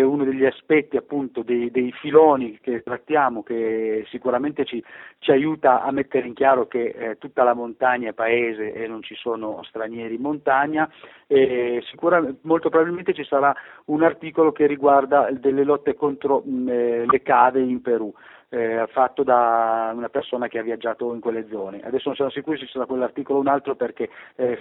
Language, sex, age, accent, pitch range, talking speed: Italian, male, 30-49, native, 120-145 Hz, 180 wpm